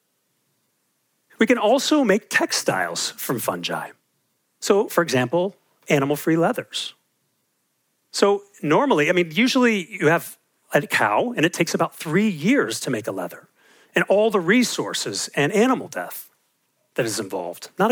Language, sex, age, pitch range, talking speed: English, male, 40-59, 170-245 Hz, 140 wpm